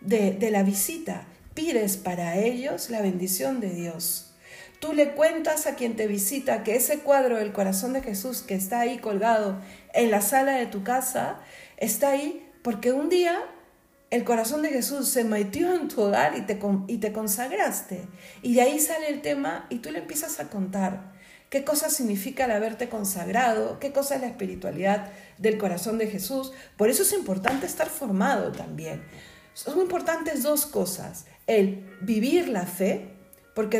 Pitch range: 200-275 Hz